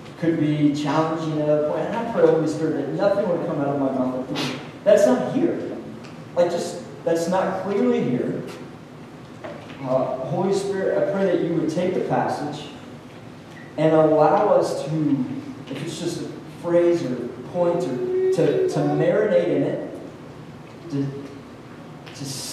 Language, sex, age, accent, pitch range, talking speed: English, male, 40-59, American, 155-195 Hz, 155 wpm